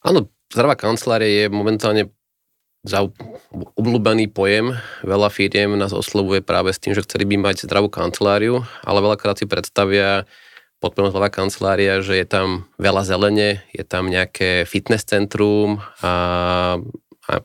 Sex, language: male, Slovak